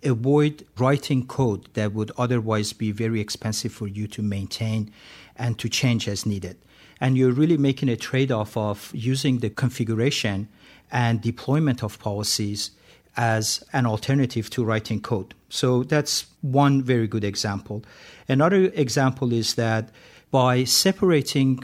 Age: 50-69